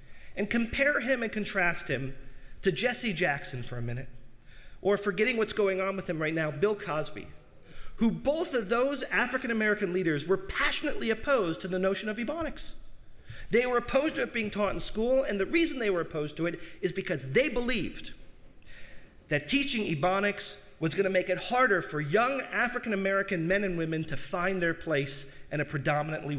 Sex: male